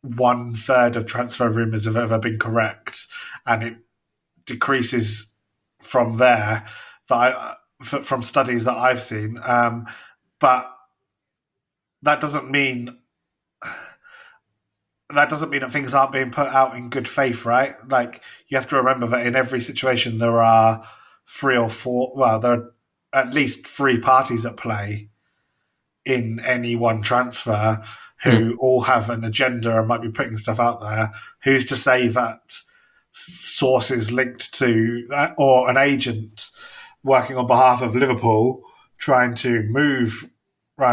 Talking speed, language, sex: 140 wpm, English, male